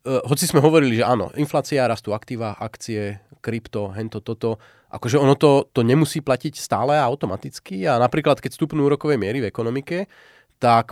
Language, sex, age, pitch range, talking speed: Slovak, male, 30-49, 110-135 Hz, 170 wpm